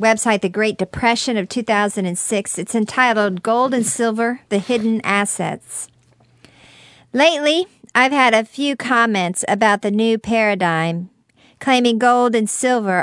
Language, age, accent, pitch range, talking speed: English, 50-69, American, 210-255 Hz, 130 wpm